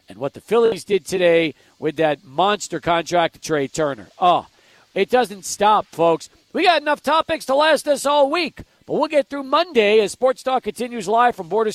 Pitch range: 135-185 Hz